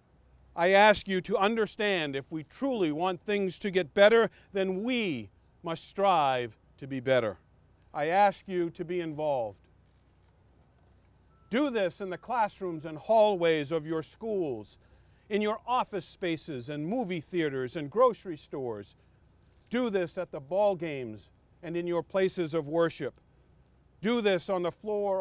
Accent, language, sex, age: American, English, male, 40-59